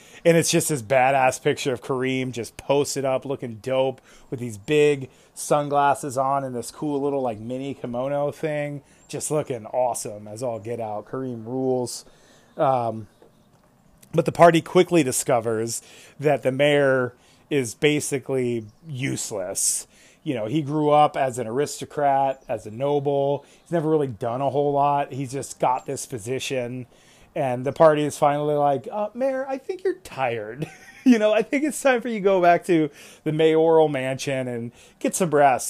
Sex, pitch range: male, 130-160 Hz